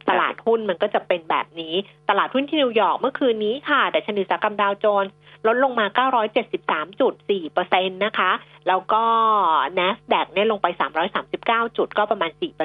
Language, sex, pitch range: Thai, female, 185-240 Hz